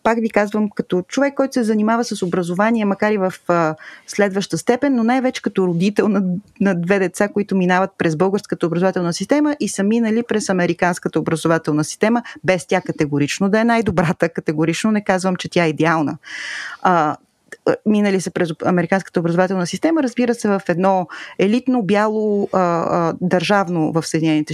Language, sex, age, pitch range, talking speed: Bulgarian, female, 30-49, 165-225 Hz, 165 wpm